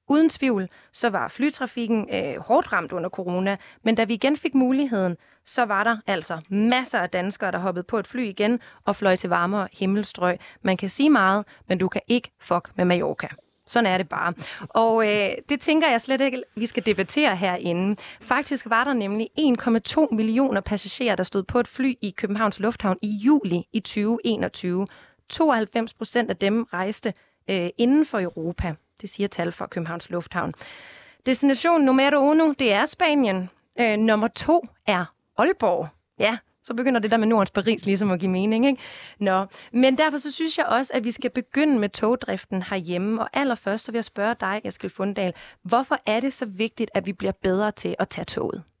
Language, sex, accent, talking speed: Danish, female, native, 190 wpm